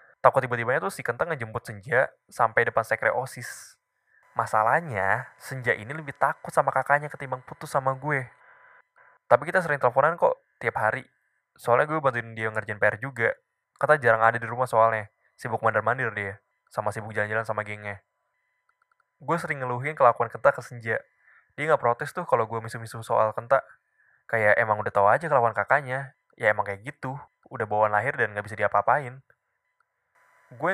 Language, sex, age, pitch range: Indonesian, male, 10-29, 110-150 Hz